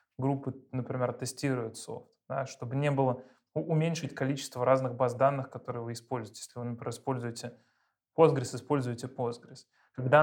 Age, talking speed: 20-39, 140 wpm